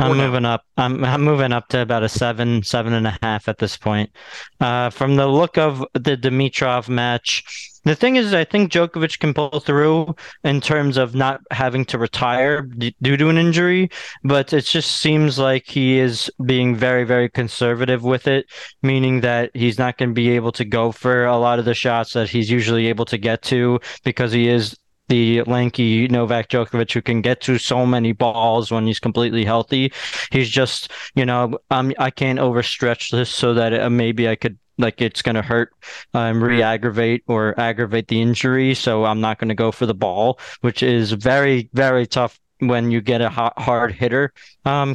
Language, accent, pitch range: English, American, 115-135 Hz